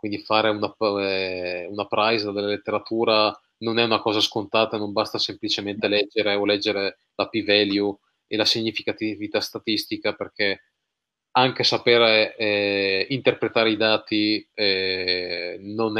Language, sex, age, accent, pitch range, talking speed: Italian, male, 20-39, native, 100-115 Hz, 125 wpm